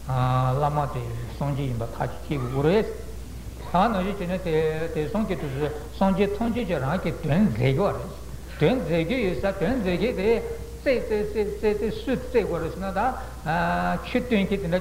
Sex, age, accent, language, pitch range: male, 60-79, Indian, Italian, 145-200 Hz